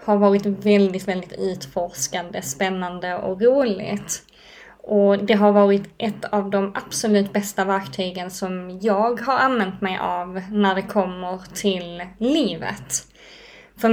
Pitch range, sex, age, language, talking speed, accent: 195-225 Hz, female, 20-39, Swedish, 130 wpm, native